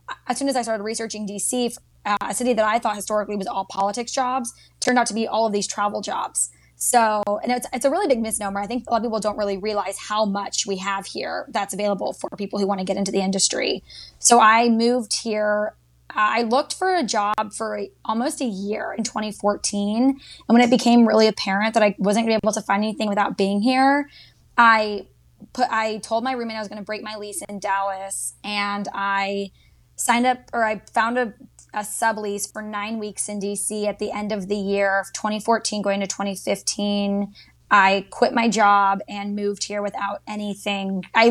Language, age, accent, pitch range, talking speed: English, 10-29, American, 200-225 Hz, 210 wpm